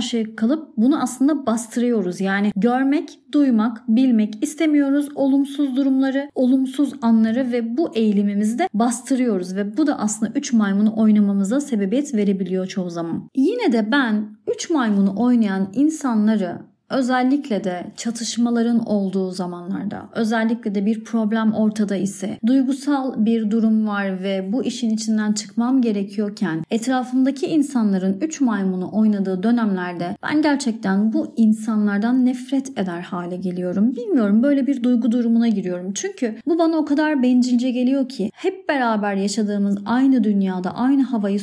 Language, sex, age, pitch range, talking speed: Turkish, female, 30-49, 205-270 Hz, 135 wpm